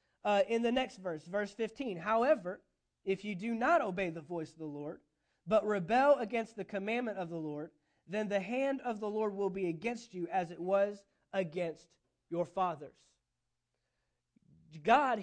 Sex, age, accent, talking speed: male, 30-49, American, 170 wpm